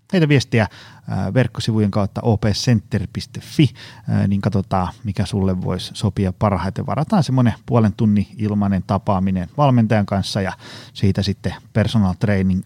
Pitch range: 100-120 Hz